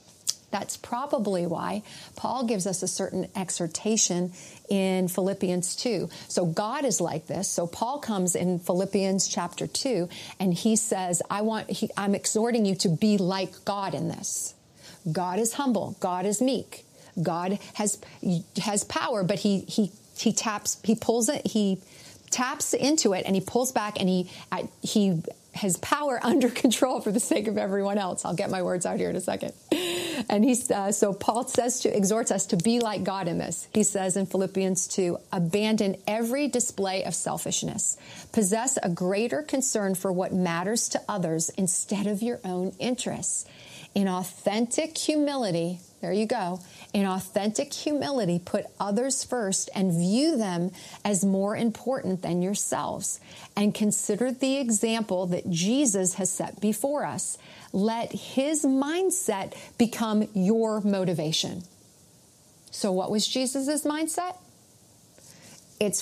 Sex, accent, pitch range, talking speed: female, American, 185-230 Hz, 150 wpm